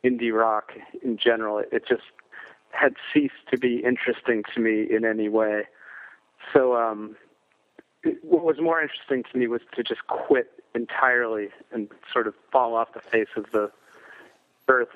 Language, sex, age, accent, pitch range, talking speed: English, male, 40-59, American, 110-140 Hz, 155 wpm